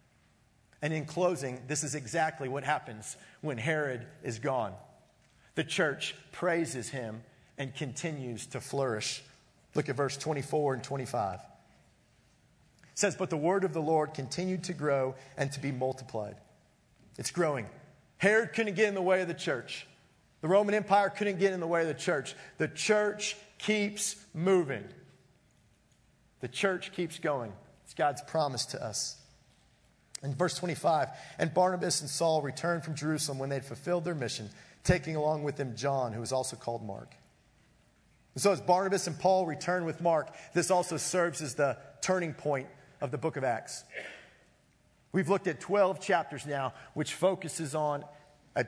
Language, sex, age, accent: English, male, 40-59, American